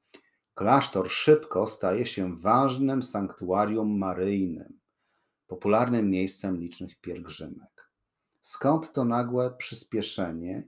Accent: native